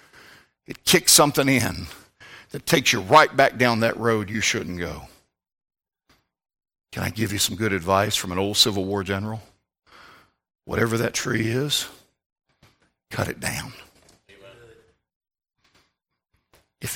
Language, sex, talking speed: English, male, 125 wpm